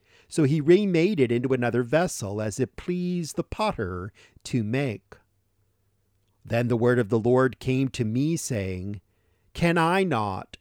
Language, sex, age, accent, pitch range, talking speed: English, male, 50-69, American, 100-140 Hz, 155 wpm